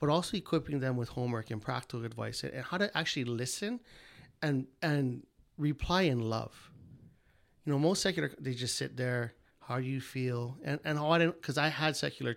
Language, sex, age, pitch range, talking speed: English, male, 30-49, 120-155 Hz, 190 wpm